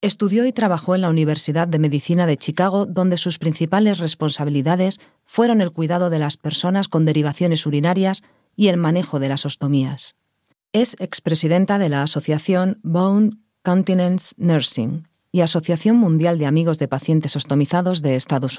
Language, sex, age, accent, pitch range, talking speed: Spanish, female, 40-59, Spanish, 150-185 Hz, 150 wpm